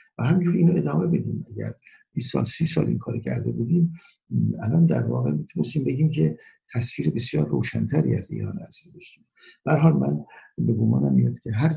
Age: 60-79